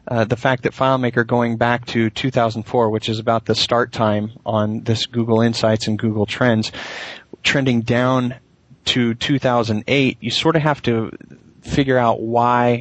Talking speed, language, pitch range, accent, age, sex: 160 wpm, English, 110-130 Hz, American, 30-49, male